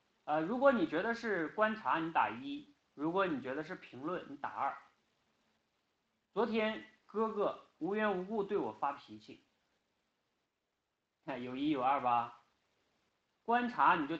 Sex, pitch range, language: male, 130-210 Hz, Chinese